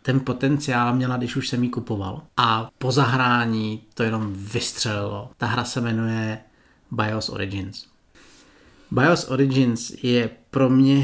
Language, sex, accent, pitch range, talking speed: Czech, male, native, 120-150 Hz, 135 wpm